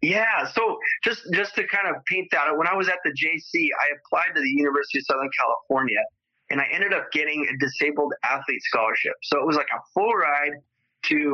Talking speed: 210 wpm